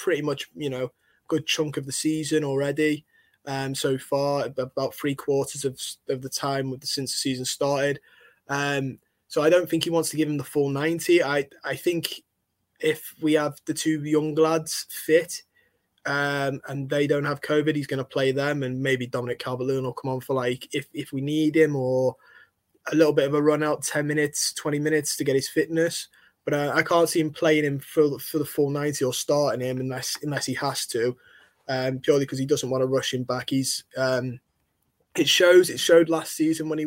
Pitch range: 135-150 Hz